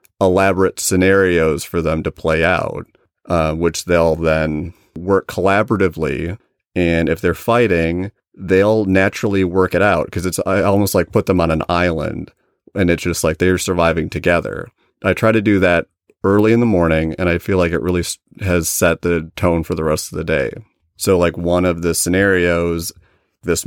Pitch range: 85-95 Hz